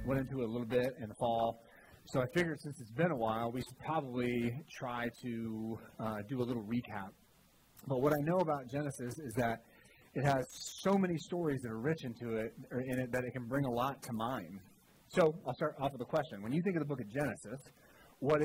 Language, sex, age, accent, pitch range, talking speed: English, male, 30-49, American, 115-145 Hz, 235 wpm